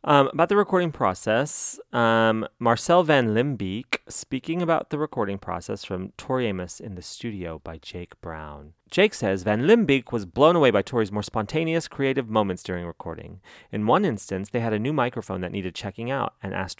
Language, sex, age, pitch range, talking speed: English, male, 30-49, 95-155 Hz, 185 wpm